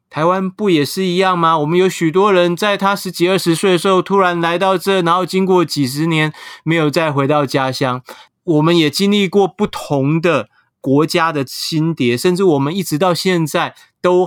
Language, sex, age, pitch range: Chinese, male, 30-49, 130-180 Hz